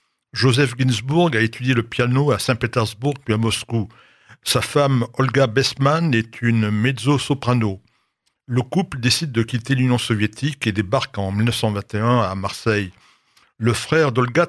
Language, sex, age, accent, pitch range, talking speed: French, male, 60-79, French, 110-130 Hz, 140 wpm